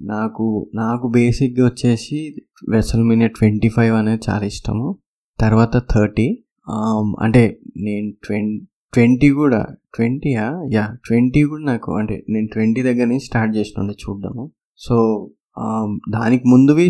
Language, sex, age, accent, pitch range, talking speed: Telugu, male, 20-39, native, 105-120 Hz, 115 wpm